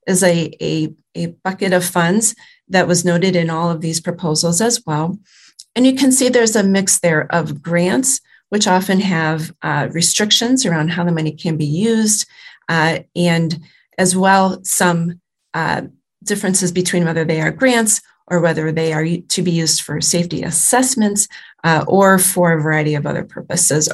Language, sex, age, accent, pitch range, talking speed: English, female, 30-49, American, 165-205 Hz, 170 wpm